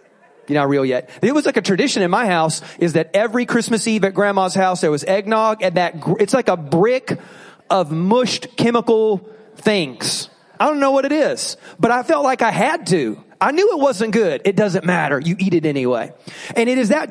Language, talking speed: English, 220 wpm